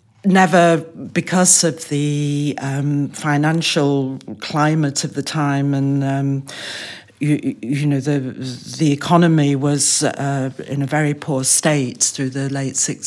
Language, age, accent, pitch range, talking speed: English, 60-79, British, 140-160 Hz, 130 wpm